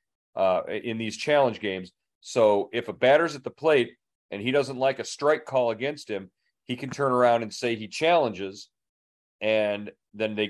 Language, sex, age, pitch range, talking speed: English, male, 40-59, 100-125 Hz, 185 wpm